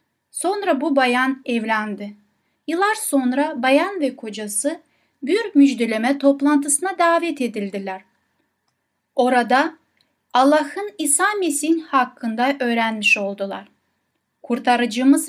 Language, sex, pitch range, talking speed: Turkish, female, 240-310 Hz, 85 wpm